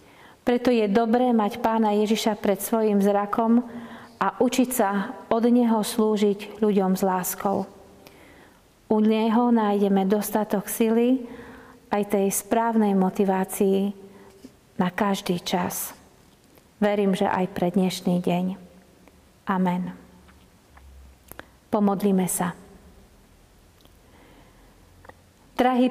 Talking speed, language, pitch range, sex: 95 wpm, Slovak, 195-220 Hz, female